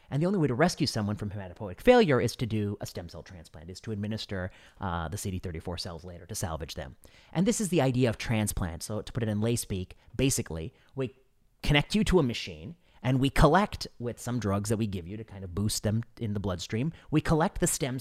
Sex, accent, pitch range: male, American, 105-135 Hz